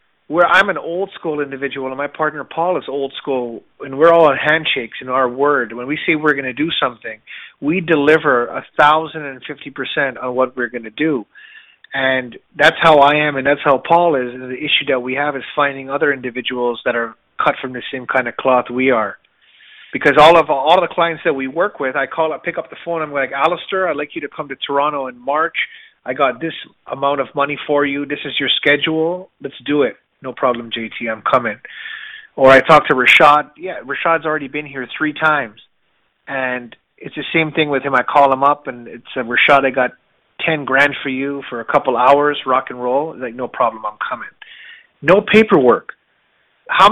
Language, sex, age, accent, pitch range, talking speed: English, male, 30-49, American, 135-165 Hz, 210 wpm